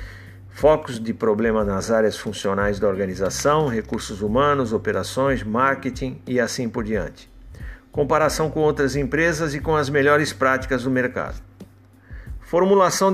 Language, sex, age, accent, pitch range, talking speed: Portuguese, male, 60-79, Brazilian, 110-145 Hz, 130 wpm